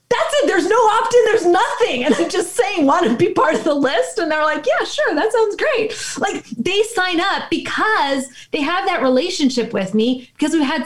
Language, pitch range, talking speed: English, 230-295 Hz, 225 wpm